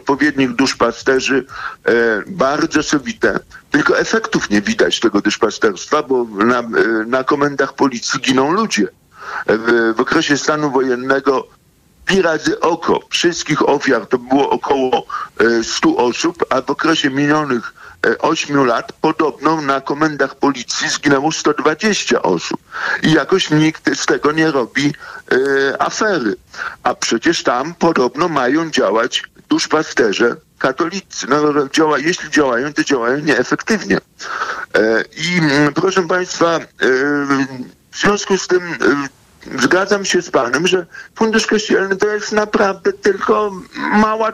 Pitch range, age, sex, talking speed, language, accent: 140-210 Hz, 50-69, male, 120 wpm, Polish, native